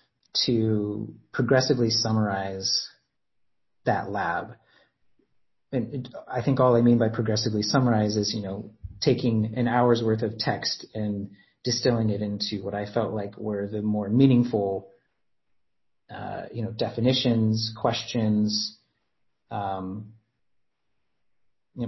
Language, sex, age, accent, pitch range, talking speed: English, male, 30-49, American, 100-120 Hz, 110 wpm